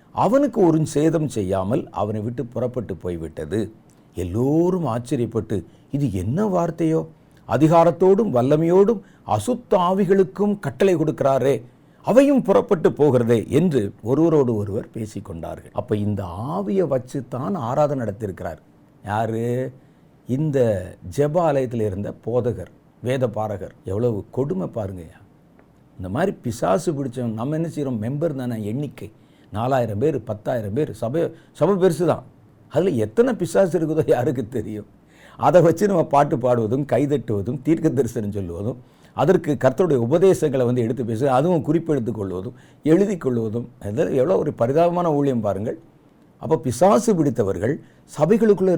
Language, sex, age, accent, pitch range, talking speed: Tamil, male, 50-69, native, 115-170 Hz, 115 wpm